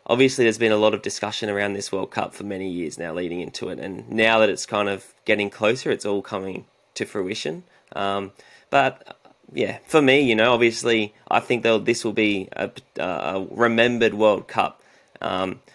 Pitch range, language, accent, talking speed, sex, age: 100-115 Hz, English, Australian, 190 wpm, male, 20-39